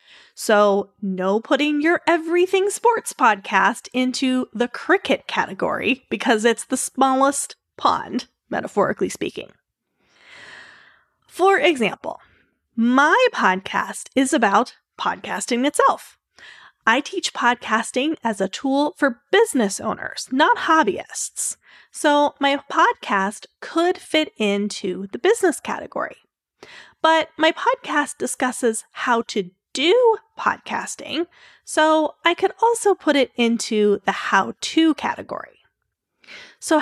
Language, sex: English, female